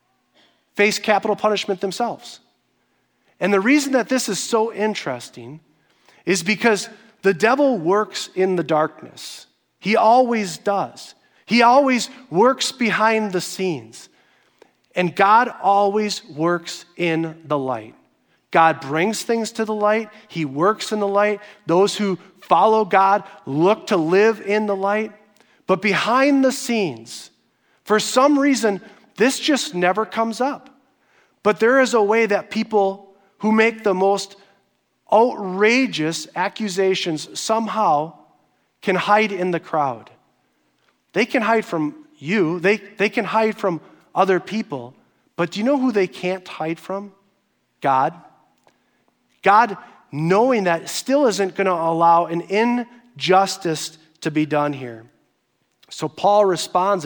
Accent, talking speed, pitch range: American, 135 wpm, 175-220 Hz